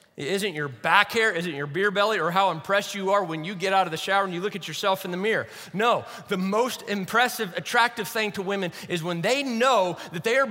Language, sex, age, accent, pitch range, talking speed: English, male, 30-49, American, 195-245 Hz, 245 wpm